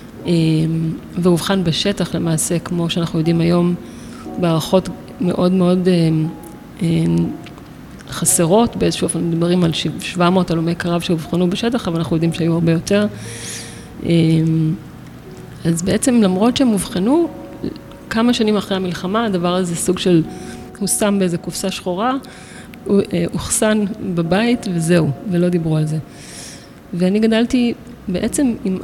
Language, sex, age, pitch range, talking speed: Hebrew, female, 30-49, 165-195 Hz, 125 wpm